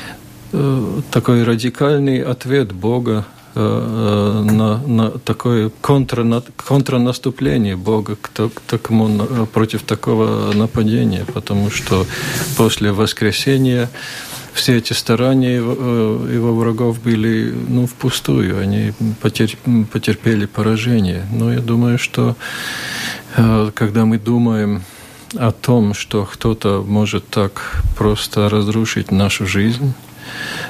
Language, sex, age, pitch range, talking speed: Russian, male, 50-69, 105-120 Hz, 100 wpm